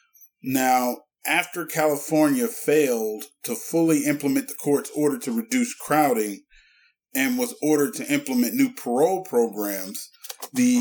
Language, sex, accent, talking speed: English, male, American, 120 wpm